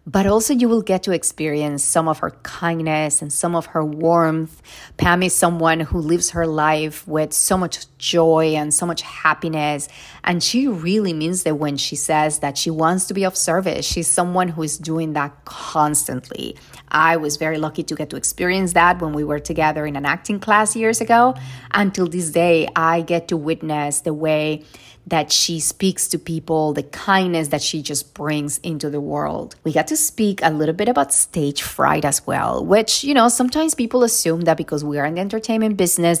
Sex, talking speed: female, 200 wpm